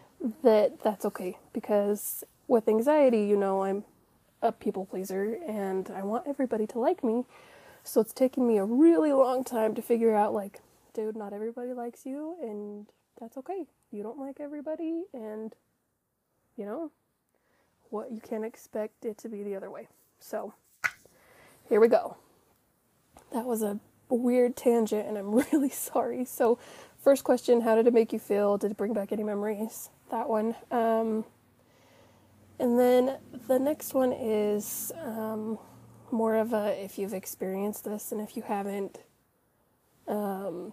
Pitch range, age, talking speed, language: 205-250 Hz, 20-39, 155 wpm, English